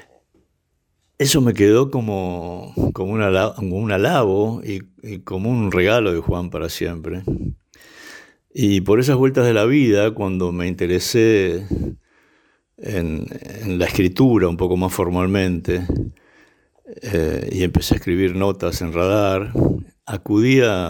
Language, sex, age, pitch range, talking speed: Spanish, male, 60-79, 90-105 Hz, 125 wpm